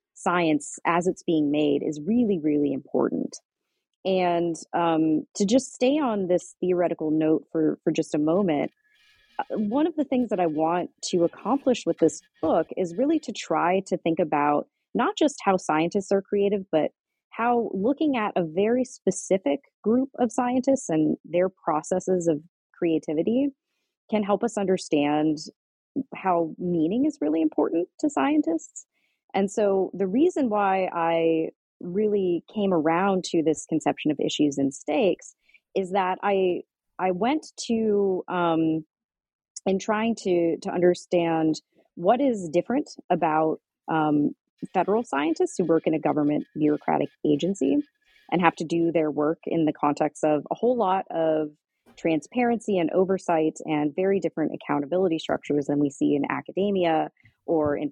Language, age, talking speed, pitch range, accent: English, 30-49, 150 wpm, 155-210 Hz, American